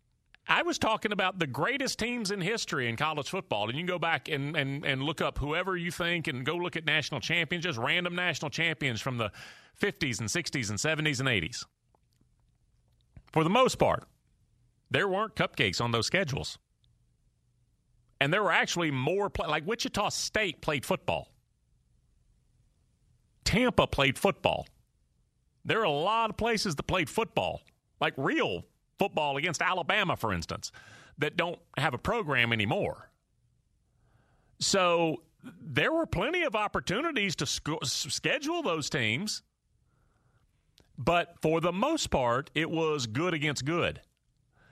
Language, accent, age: English, American, 40-59